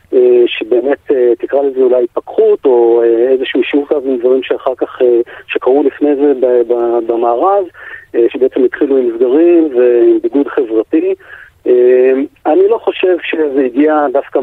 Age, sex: 40-59, male